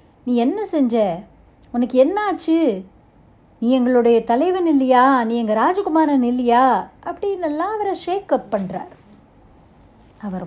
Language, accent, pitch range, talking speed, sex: Tamil, native, 215-290 Hz, 120 wpm, female